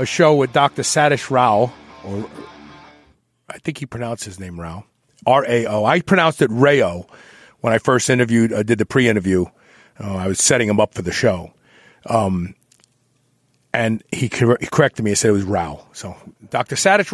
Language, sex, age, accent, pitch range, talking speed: English, male, 40-59, American, 115-145 Hz, 180 wpm